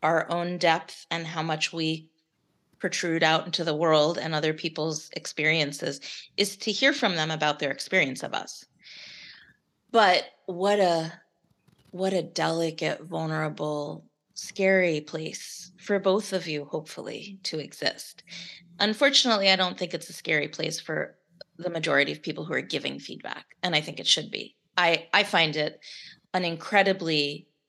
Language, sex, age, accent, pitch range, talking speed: English, female, 30-49, American, 155-185 Hz, 155 wpm